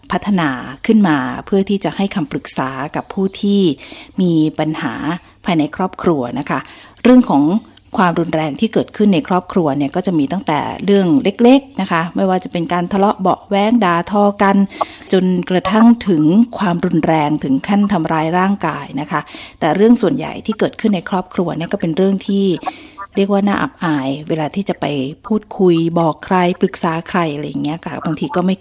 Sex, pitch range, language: female, 160-200 Hz, Thai